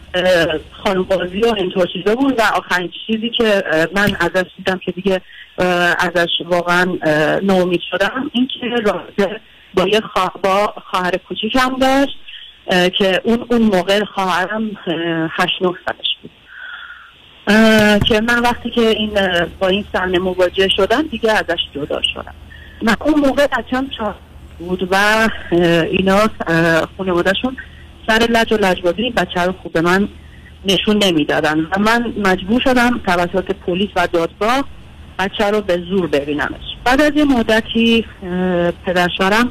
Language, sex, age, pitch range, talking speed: Persian, female, 50-69, 180-230 Hz, 130 wpm